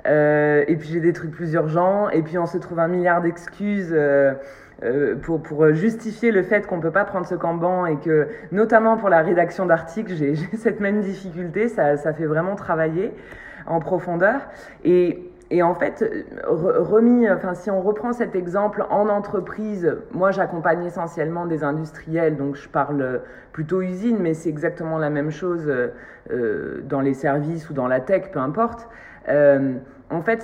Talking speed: 180 wpm